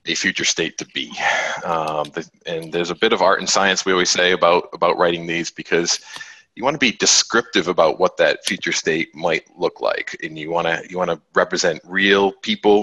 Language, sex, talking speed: English, male, 210 wpm